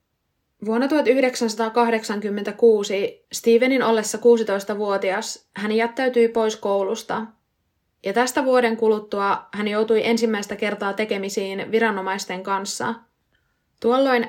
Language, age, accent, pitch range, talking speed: Finnish, 20-39, native, 200-230 Hz, 90 wpm